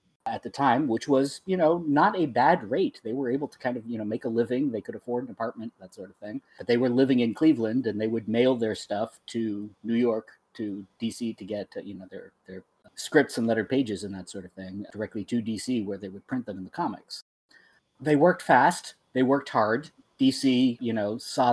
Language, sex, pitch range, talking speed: English, male, 105-130 Hz, 230 wpm